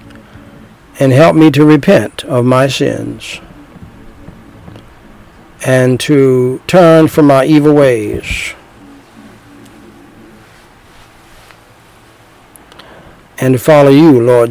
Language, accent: English, American